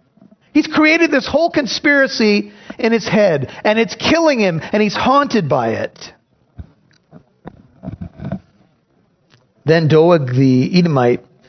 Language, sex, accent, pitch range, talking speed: English, male, American, 140-185 Hz, 110 wpm